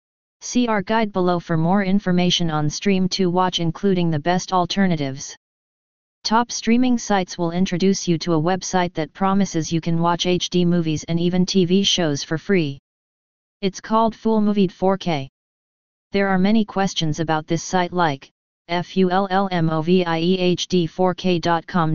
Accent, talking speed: American, 140 wpm